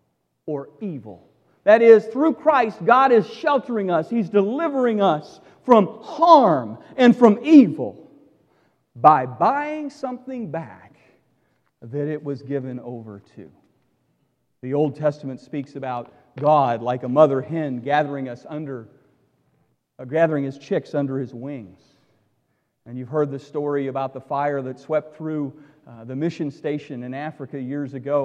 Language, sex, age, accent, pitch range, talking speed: English, male, 40-59, American, 145-235 Hz, 140 wpm